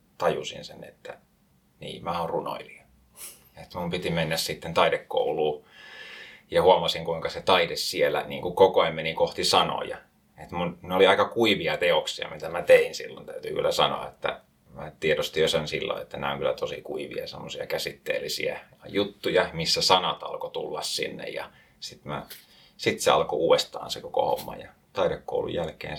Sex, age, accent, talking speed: male, 30-49, native, 160 wpm